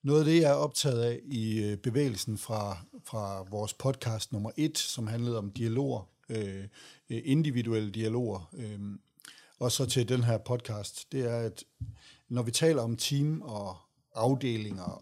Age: 60-79